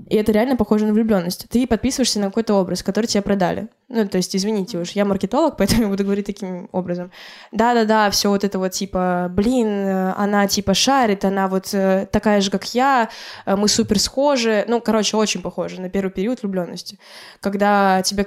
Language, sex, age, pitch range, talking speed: Russian, female, 10-29, 195-225 Hz, 185 wpm